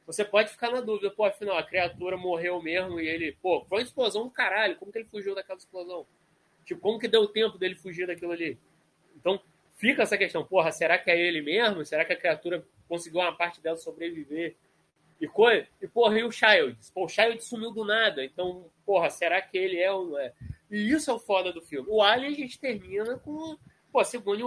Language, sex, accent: Portuguese, male, Brazilian